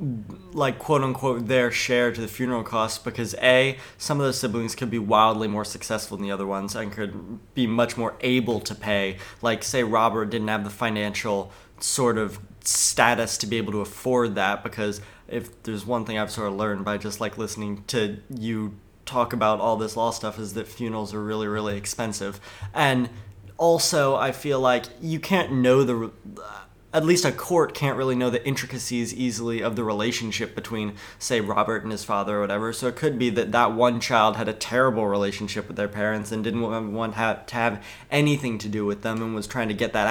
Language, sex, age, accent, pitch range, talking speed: English, male, 20-39, American, 105-125 Hz, 205 wpm